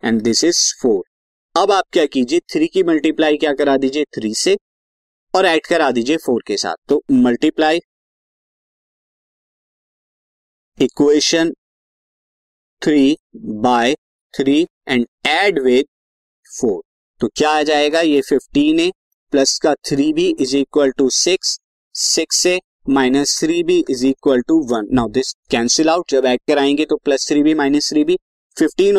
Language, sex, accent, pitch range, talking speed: Hindi, male, native, 135-200 Hz, 150 wpm